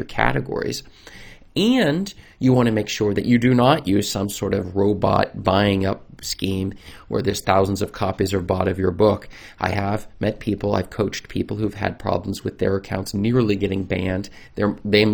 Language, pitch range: English, 95-110 Hz